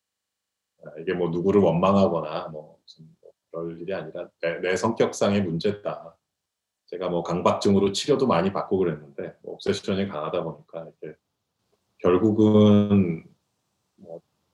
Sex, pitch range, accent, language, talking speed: male, 90-110 Hz, Korean, English, 105 wpm